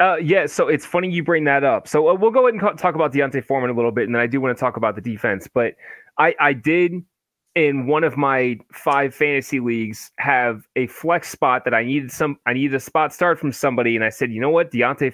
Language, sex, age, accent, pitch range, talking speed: English, male, 20-39, American, 125-155 Hz, 260 wpm